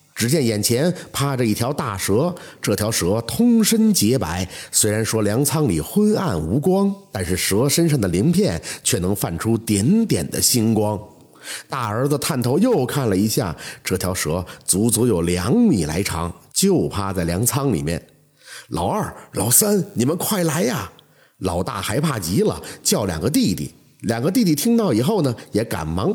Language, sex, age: Chinese, male, 50-69